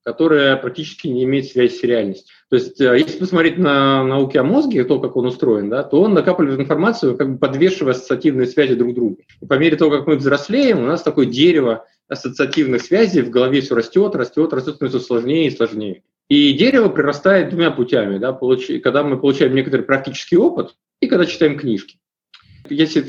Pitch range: 135-180 Hz